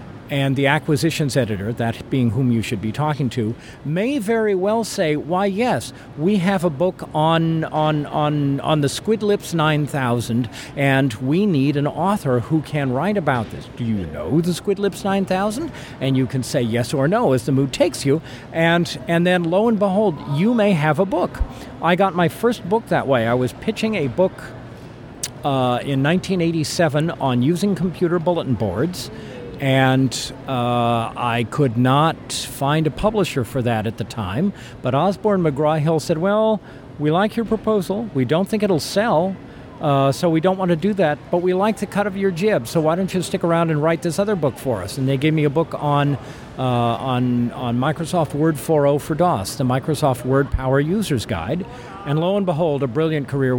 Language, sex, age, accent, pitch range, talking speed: English, male, 50-69, American, 130-180 Hz, 195 wpm